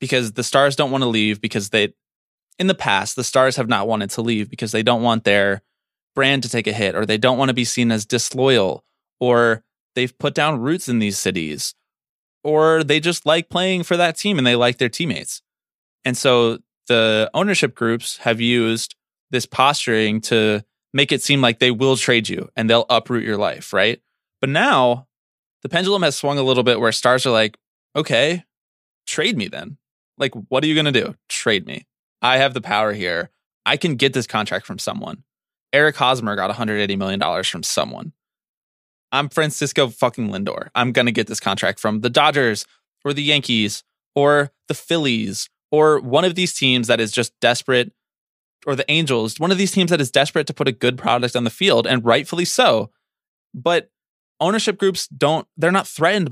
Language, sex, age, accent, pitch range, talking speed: English, male, 20-39, American, 115-150 Hz, 195 wpm